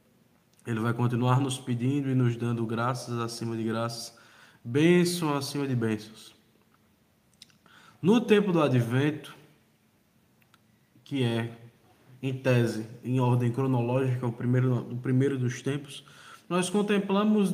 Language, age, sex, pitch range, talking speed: Portuguese, 20-39, male, 130-195 Hz, 115 wpm